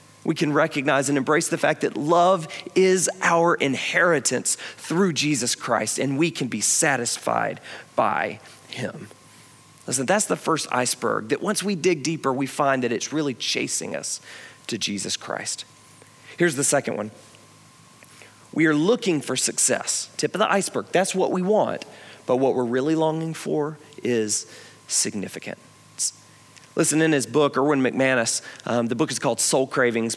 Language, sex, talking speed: English, male, 160 wpm